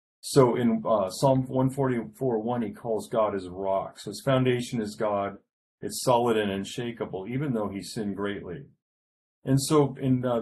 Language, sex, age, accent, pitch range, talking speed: English, male, 50-69, American, 95-120 Hz, 160 wpm